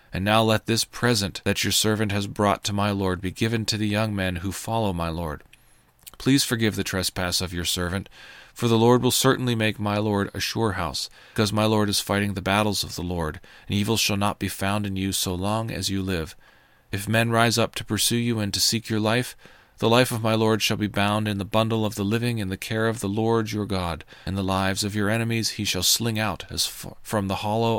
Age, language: 40-59, English